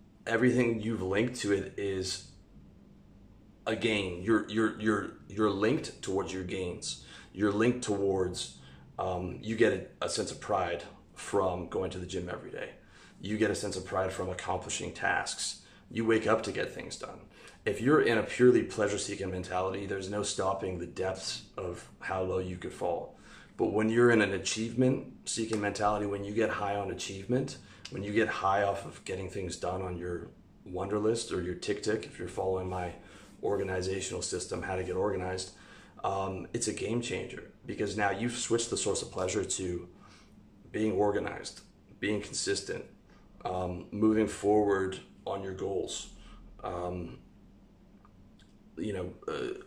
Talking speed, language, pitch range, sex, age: 165 wpm, English, 95-110 Hz, male, 30-49